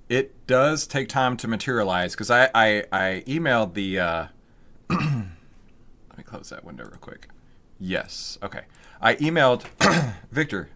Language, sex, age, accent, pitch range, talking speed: English, male, 30-49, American, 95-120 Hz, 140 wpm